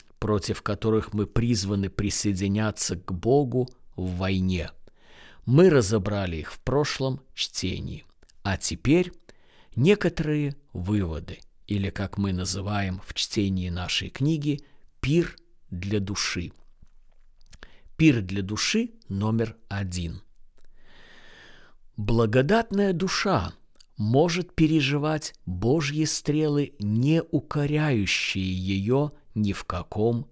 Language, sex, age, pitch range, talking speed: Russian, male, 50-69, 100-150 Hz, 95 wpm